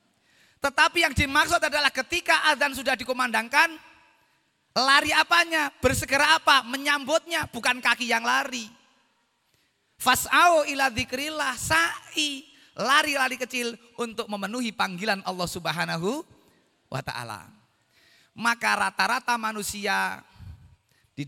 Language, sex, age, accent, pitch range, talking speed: Indonesian, male, 30-49, native, 165-270 Hz, 95 wpm